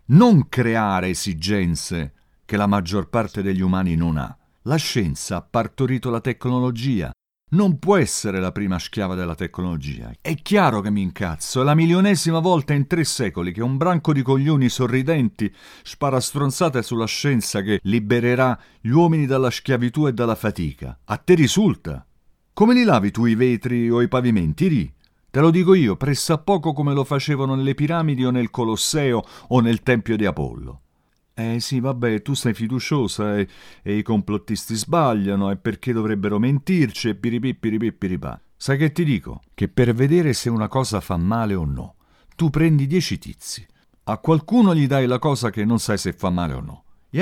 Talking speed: 180 wpm